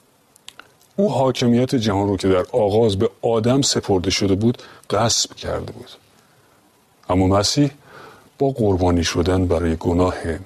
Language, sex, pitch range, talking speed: Persian, male, 95-135 Hz, 125 wpm